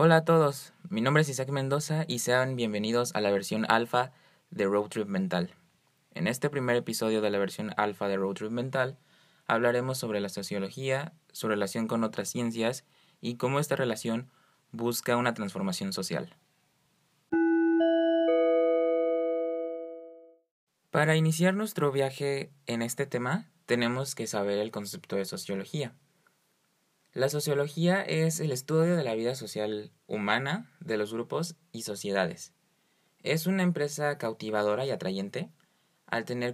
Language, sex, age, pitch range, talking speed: Spanish, male, 20-39, 110-155 Hz, 140 wpm